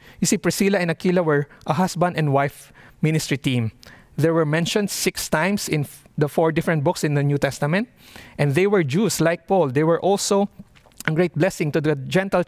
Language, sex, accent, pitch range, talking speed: English, male, Filipino, 140-180 Hz, 195 wpm